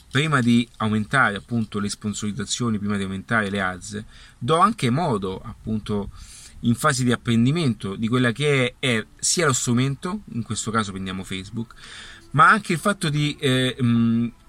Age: 30-49